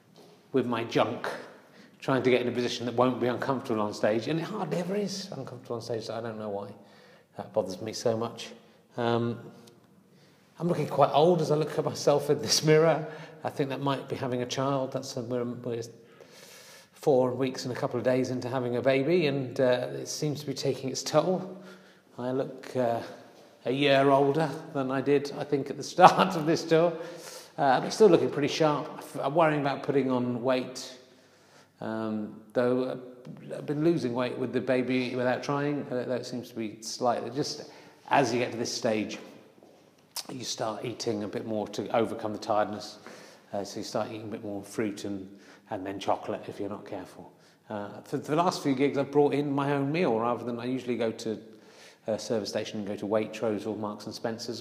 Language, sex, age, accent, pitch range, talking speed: English, male, 40-59, British, 115-140 Hz, 205 wpm